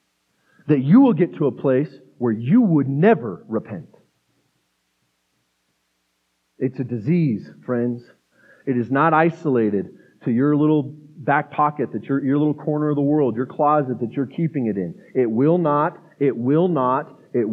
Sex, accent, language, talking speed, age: male, American, English, 160 wpm, 30-49